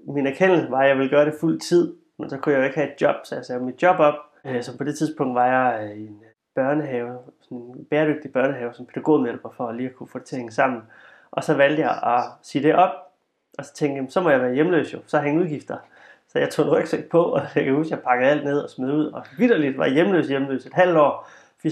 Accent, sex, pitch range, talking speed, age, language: native, male, 130-160 Hz, 270 wpm, 30-49, Danish